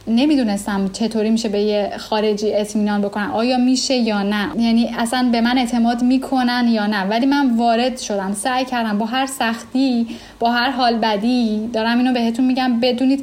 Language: Persian